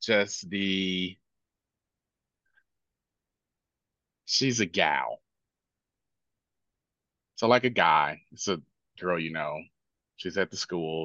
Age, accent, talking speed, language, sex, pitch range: 30-49, American, 100 wpm, English, male, 85-105 Hz